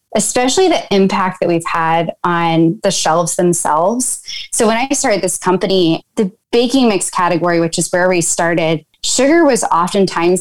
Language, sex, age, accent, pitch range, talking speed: English, female, 10-29, American, 170-215 Hz, 160 wpm